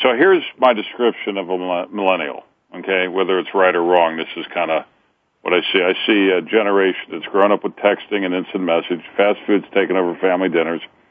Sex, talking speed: male, 205 wpm